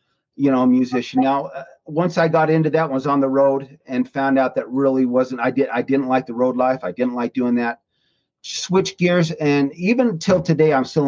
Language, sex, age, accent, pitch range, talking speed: English, male, 40-59, American, 125-160 Hz, 215 wpm